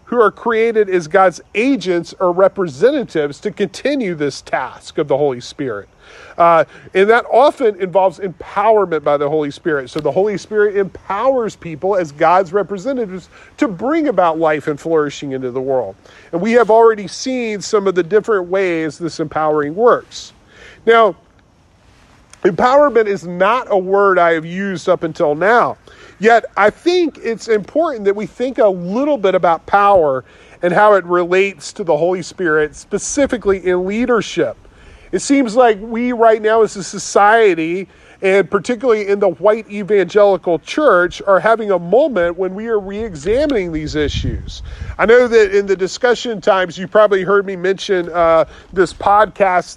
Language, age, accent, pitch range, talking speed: English, 40-59, American, 175-220 Hz, 160 wpm